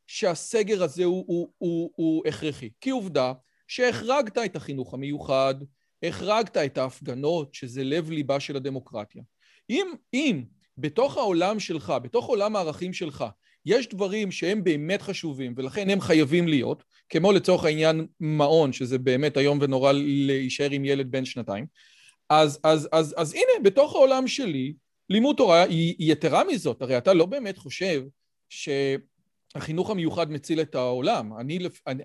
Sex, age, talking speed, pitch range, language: male, 40-59, 145 wpm, 150-205 Hz, Hebrew